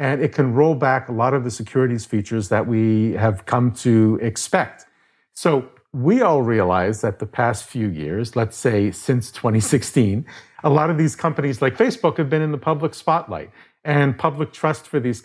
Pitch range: 110-150 Hz